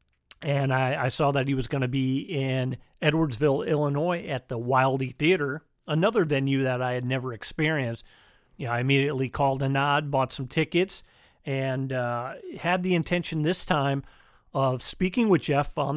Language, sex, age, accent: English, male, 40-59, American